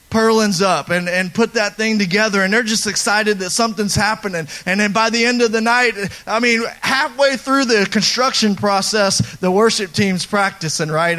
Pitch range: 195-245 Hz